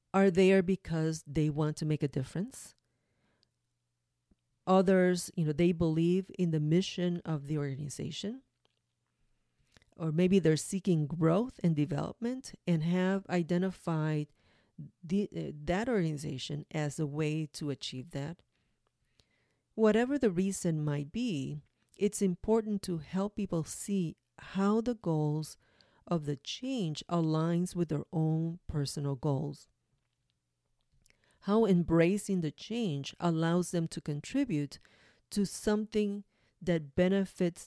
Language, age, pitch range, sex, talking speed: English, 40-59, 150-195 Hz, female, 120 wpm